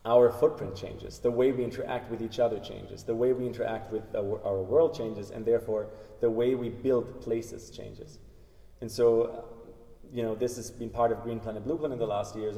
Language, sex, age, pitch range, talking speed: English, male, 20-39, 110-130 Hz, 215 wpm